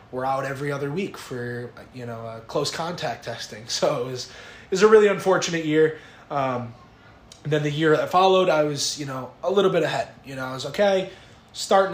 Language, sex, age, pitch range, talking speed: English, male, 20-39, 120-150 Hz, 210 wpm